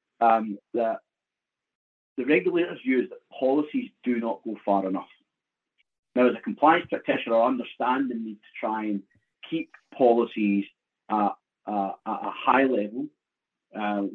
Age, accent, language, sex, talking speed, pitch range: 40-59, British, English, male, 145 wpm, 105-140 Hz